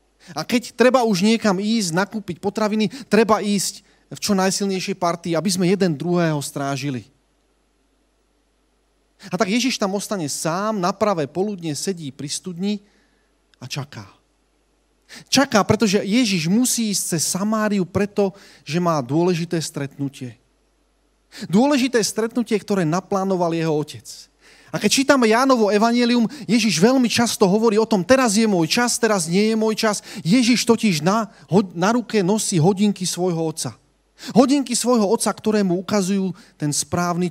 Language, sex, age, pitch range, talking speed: Slovak, male, 30-49, 155-220 Hz, 140 wpm